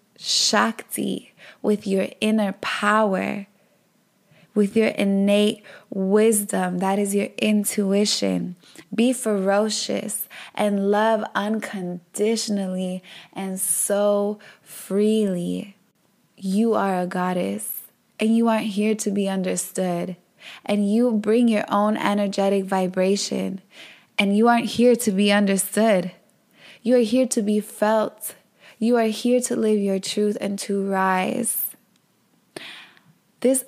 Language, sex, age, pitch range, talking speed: English, female, 20-39, 195-220 Hz, 110 wpm